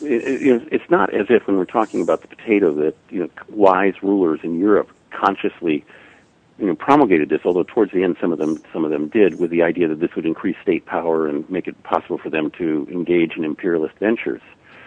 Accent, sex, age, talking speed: American, male, 50-69, 225 wpm